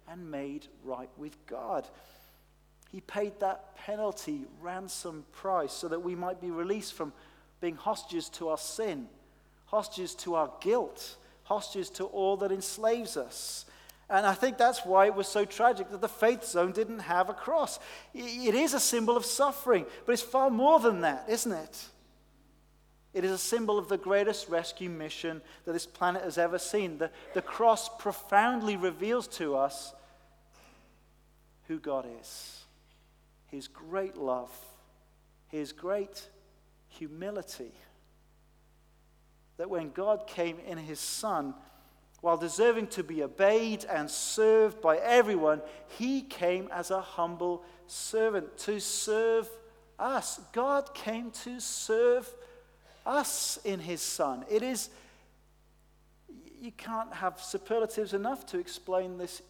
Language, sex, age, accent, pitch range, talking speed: English, male, 40-59, British, 170-225 Hz, 140 wpm